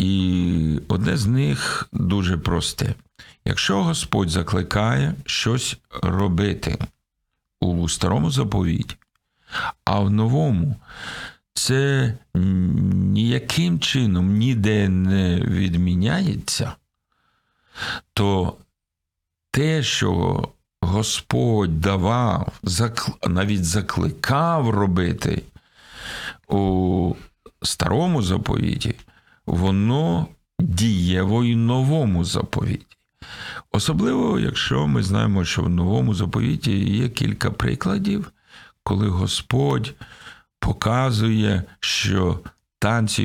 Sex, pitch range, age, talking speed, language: male, 90-120 Hz, 50-69, 75 wpm, Ukrainian